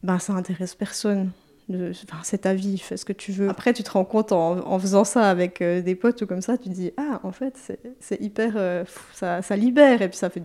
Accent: French